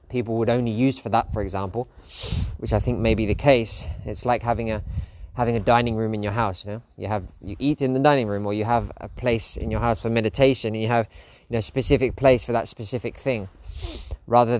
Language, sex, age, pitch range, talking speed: English, male, 20-39, 95-120 Hz, 245 wpm